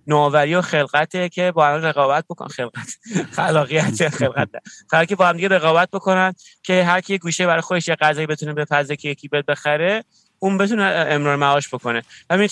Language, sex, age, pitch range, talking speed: Persian, male, 30-49, 130-170 Hz, 165 wpm